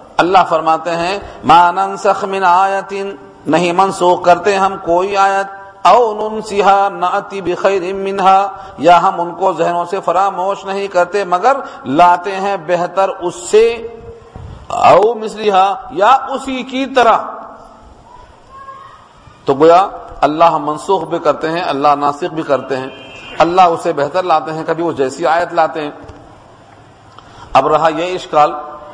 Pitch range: 170-220 Hz